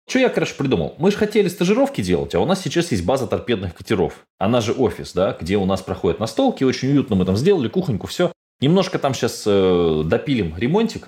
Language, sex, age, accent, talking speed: Russian, male, 20-39, native, 210 wpm